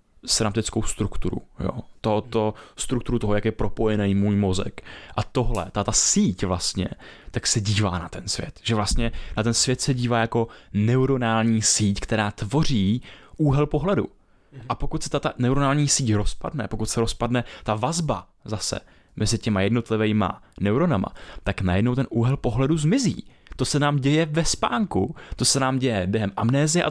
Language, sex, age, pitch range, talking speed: Czech, male, 20-39, 105-135 Hz, 160 wpm